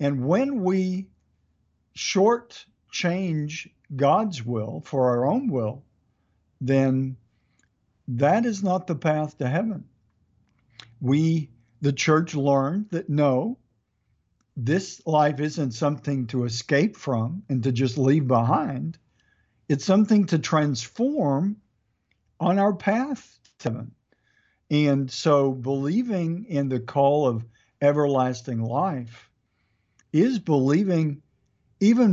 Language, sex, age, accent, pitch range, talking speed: English, male, 50-69, American, 120-155 Hz, 105 wpm